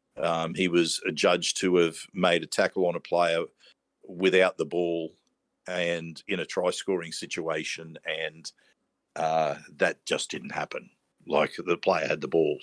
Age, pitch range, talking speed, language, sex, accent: 50-69, 90-100 Hz, 150 wpm, English, male, Australian